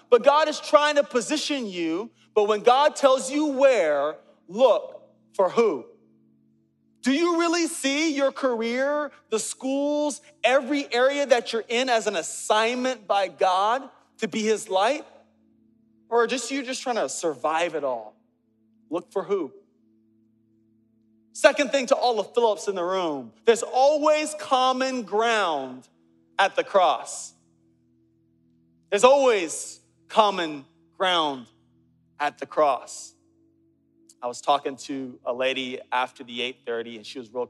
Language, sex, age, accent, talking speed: English, male, 40-59, American, 140 wpm